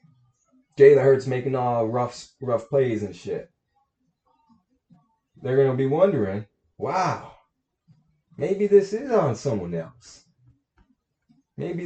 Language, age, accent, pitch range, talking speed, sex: English, 20-39, American, 100-145 Hz, 105 wpm, male